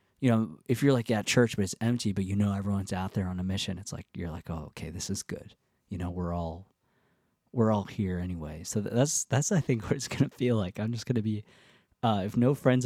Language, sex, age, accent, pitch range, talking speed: English, male, 20-39, American, 95-115 Hz, 255 wpm